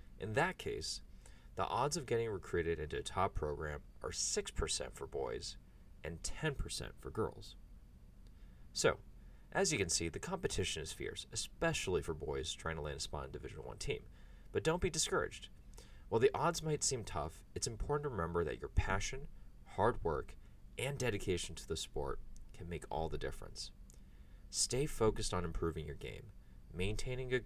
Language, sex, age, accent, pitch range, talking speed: English, male, 30-49, American, 65-105 Hz, 175 wpm